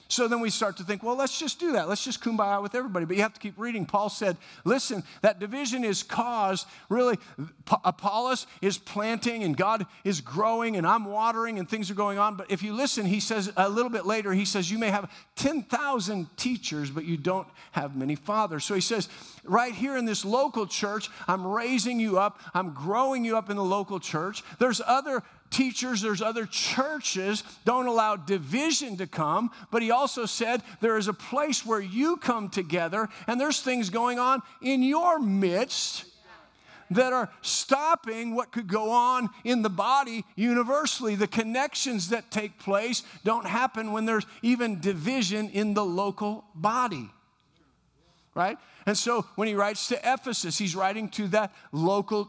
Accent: American